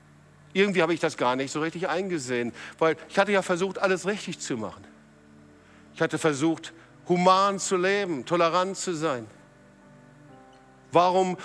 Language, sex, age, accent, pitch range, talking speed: German, male, 50-69, German, 135-200 Hz, 145 wpm